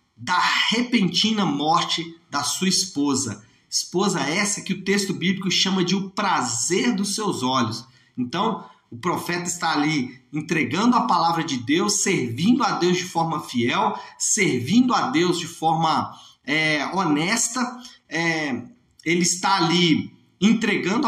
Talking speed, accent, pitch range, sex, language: 130 wpm, Brazilian, 160-215 Hz, male, Portuguese